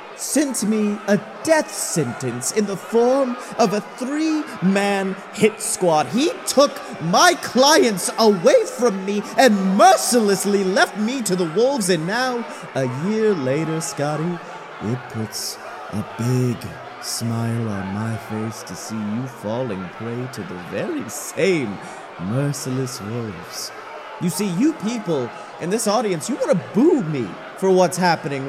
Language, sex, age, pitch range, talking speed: English, male, 30-49, 160-230 Hz, 140 wpm